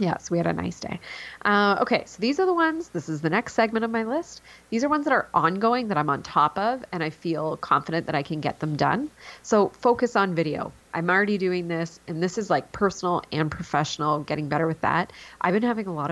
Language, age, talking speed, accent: English, 30-49, 245 wpm, American